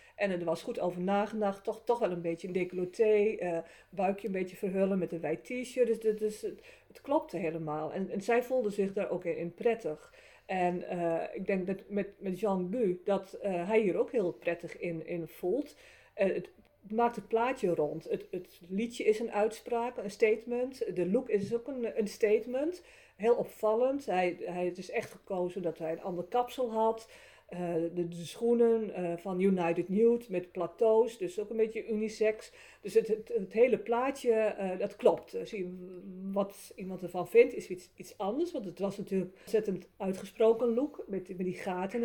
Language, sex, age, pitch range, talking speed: Dutch, female, 50-69, 180-235 Hz, 195 wpm